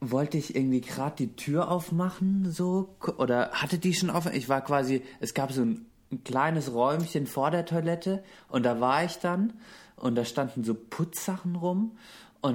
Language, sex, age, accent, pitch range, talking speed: German, male, 30-49, German, 125-170 Hz, 180 wpm